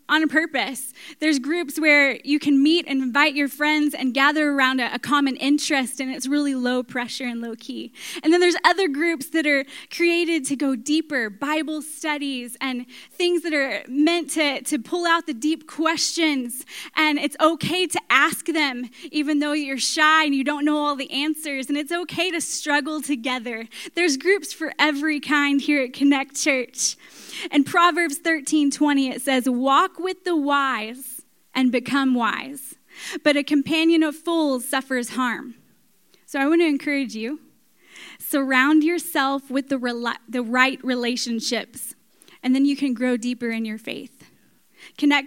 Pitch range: 265-315 Hz